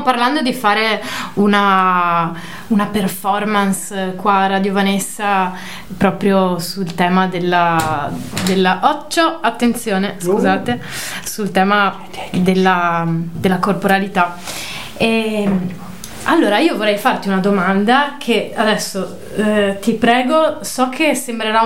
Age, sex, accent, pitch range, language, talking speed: 20-39, female, native, 190-225 Hz, Italian, 105 wpm